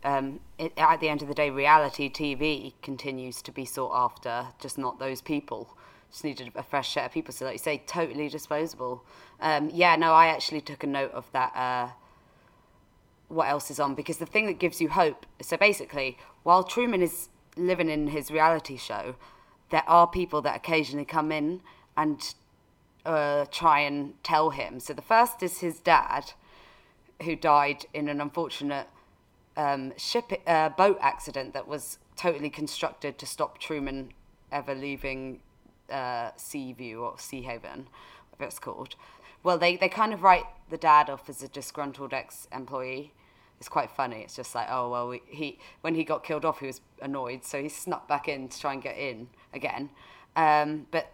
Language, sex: English, female